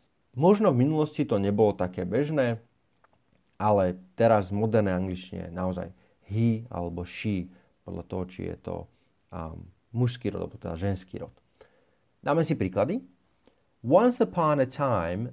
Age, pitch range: 30-49, 95-125 Hz